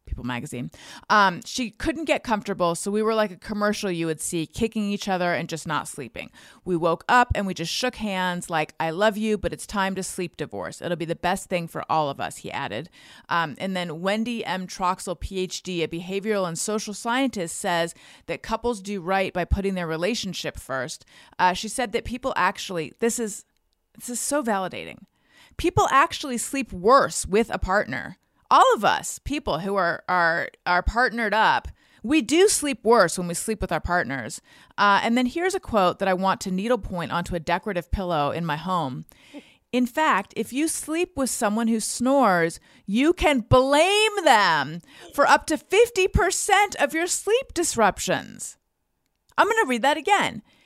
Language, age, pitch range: English, 30-49, 180-285 Hz